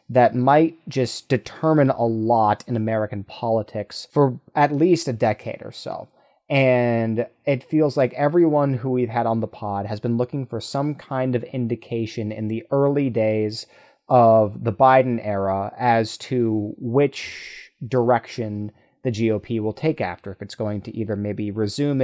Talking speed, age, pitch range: 160 wpm, 30-49, 110-135 Hz